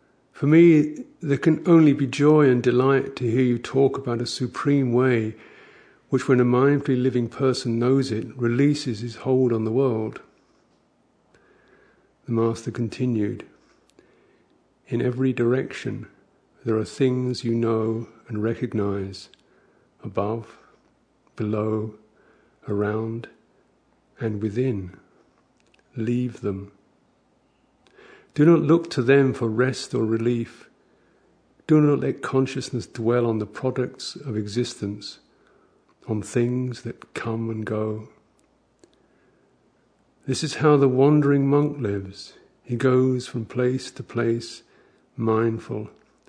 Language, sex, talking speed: English, male, 115 wpm